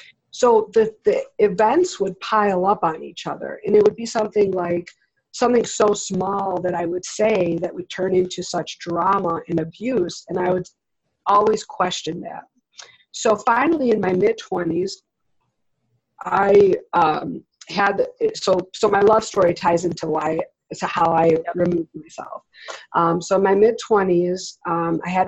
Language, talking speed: English, 160 wpm